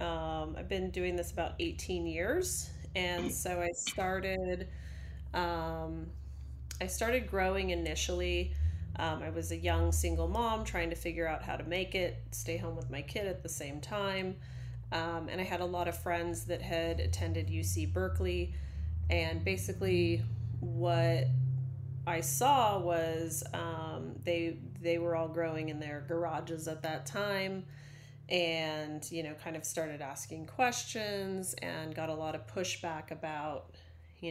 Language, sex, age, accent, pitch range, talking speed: English, female, 30-49, American, 115-175 Hz, 155 wpm